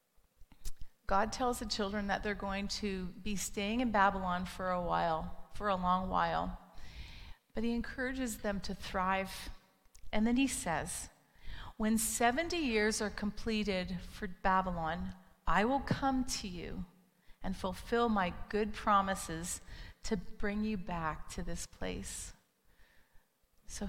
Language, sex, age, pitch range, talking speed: English, female, 40-59, 180-215 Hz, 135 wpm